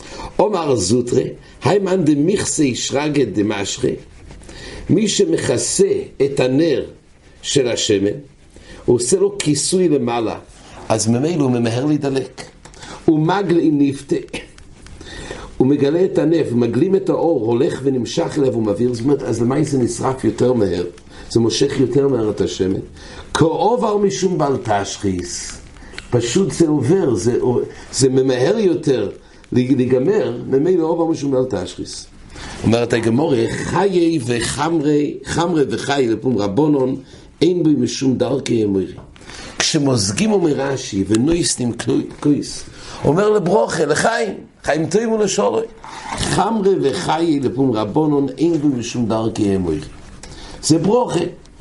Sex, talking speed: male, 90 wpm